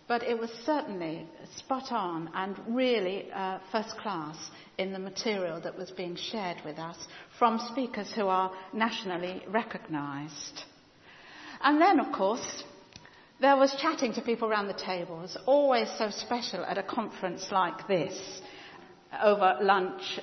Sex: female